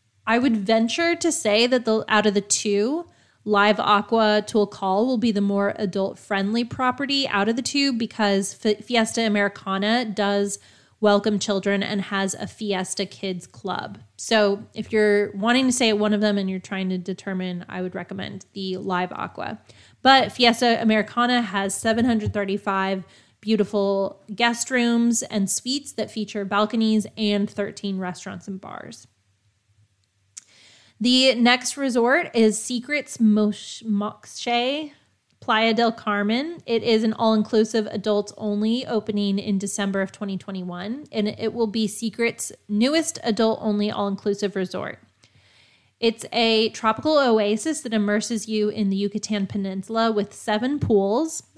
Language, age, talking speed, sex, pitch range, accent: English, 20-39, 135 wpm, female, 195-230 Hz, American